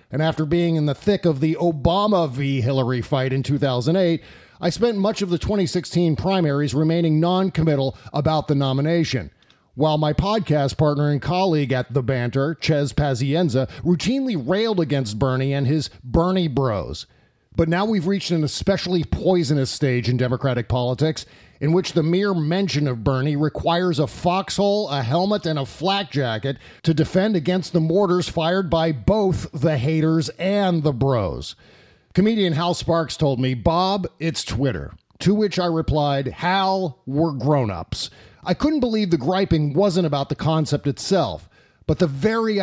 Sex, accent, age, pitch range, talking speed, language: male, American, 40-59, 140-185 Hz, 160 wpm, English